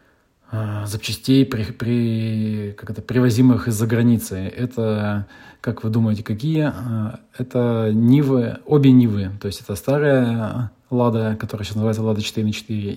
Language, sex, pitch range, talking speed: Russian, male, 105-120 Hz, 135 wpm